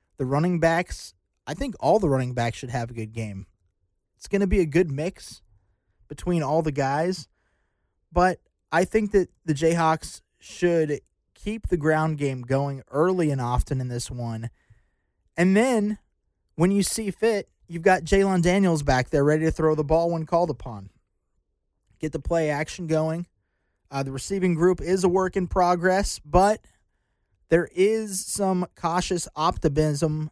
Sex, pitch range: male, 120-175 Hz